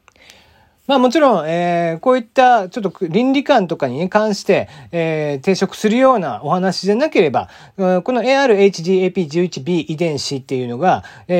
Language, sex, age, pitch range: Japanese, male, 40-59, 135-225 Hz